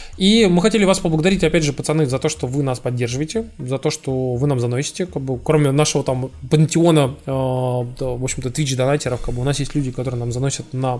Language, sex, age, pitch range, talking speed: Russian, male, 20-39, 125-160 Hz, 180 wpm